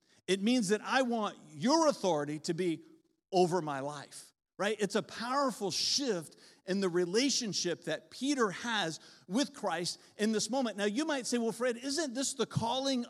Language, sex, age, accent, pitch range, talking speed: English, male, 50-69, American, 175-225 Hz, 175 wpm